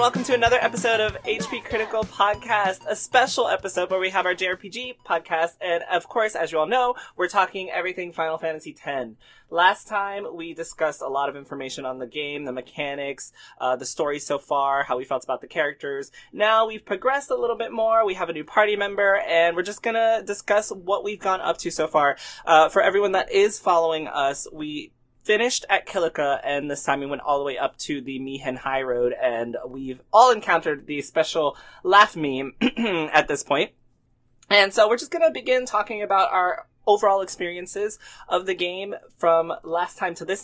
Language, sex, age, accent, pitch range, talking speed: English, male, 20-39, American, 145-210 Hz, 200 wpm